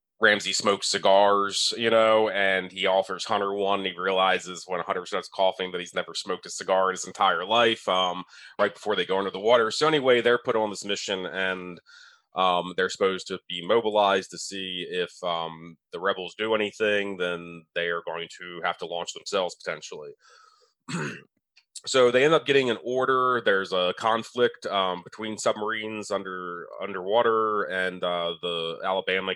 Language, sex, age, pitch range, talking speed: English, male, 30-49, 90-115 Hz, 175 wpm